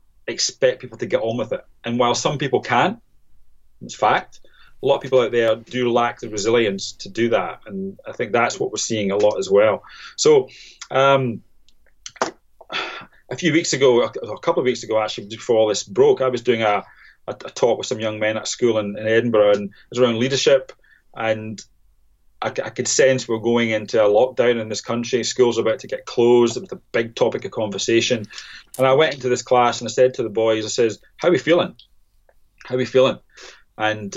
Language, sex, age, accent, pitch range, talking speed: English, male, 30-49, British, 110-135 Hz, 215 wpm